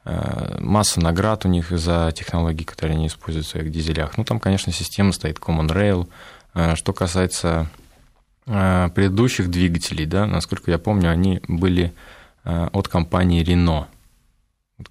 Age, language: 20-39, Russian